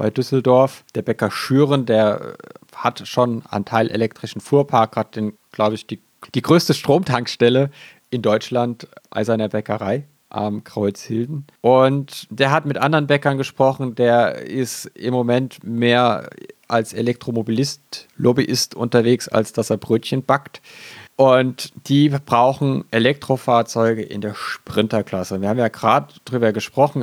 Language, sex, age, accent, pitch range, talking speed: German, male, 40-59, German, 110-135 Hz, 135 wpm